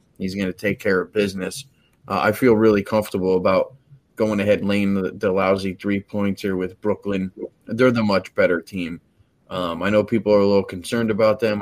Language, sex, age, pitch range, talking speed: English, male, 20-39, 95-110 Hz, 205 wpm